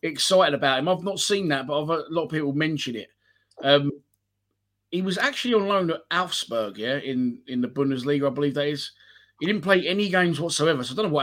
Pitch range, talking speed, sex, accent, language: 125-165 Hz, 235 wpm, male, British, English